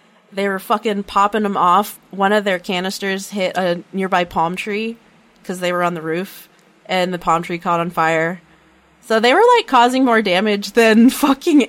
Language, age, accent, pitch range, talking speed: English, 20-39, American, 175-220 Hz, 190 wpm